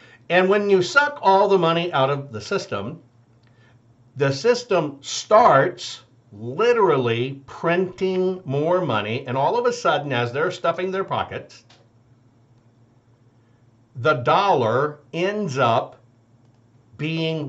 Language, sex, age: English, male, 60-79